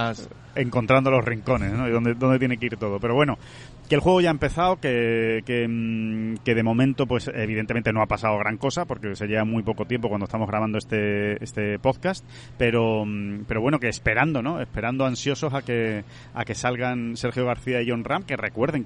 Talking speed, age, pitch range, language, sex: 195 wpm, 30-49, 115-145 Hz, Spanish, male